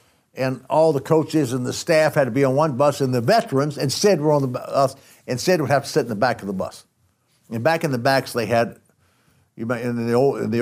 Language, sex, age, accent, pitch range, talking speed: English, male, 60-79, American, 120-165 Hz, 245 wpm